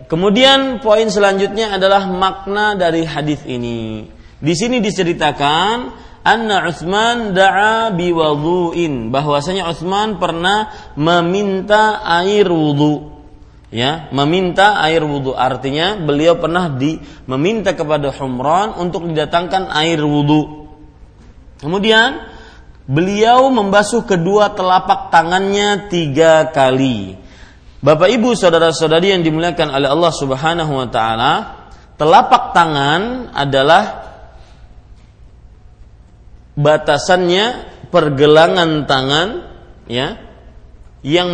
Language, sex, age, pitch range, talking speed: Malay, male, 30-49, 140-190 Hz, 90 wpm